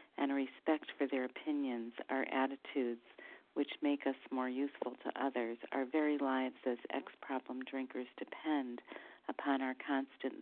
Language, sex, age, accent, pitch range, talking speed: English, female, 40-59, American, 130-195 Hz, 140 wpm